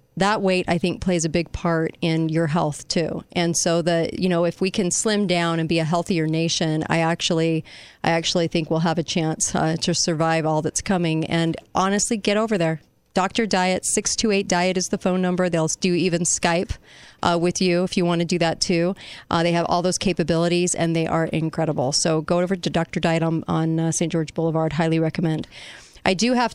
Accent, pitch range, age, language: American, 165-195 Hz, 40-59, English